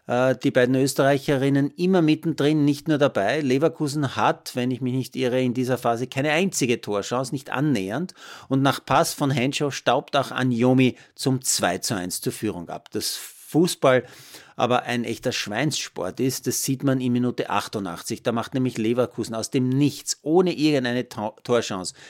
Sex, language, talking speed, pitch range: male, German, 165 wpm, 115-140 Hz